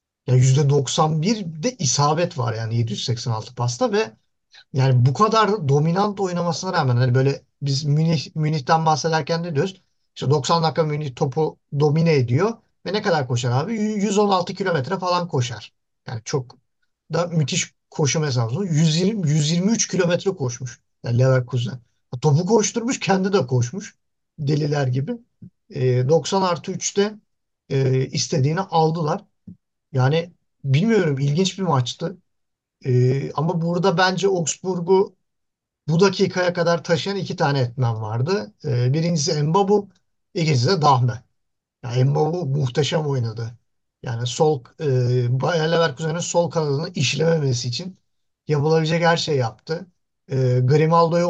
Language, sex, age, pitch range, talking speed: Turkish, male, 50-69, 130-175 Hz, 125 wpm